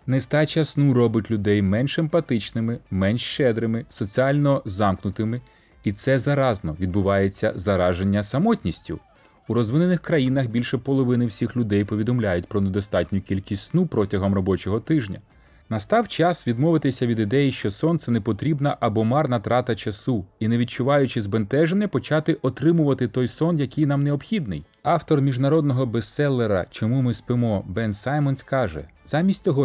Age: 30-49